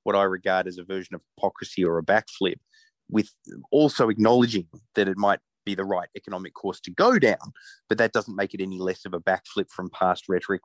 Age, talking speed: 30-49, 215 wpm